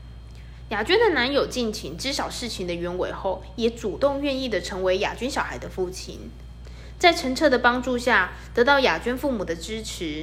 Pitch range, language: 170-265 Hz, Chinese